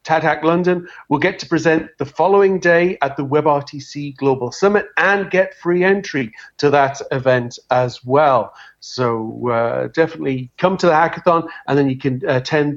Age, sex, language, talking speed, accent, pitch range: 40-59, male, English, 170 wpm, British, 130-155 Hz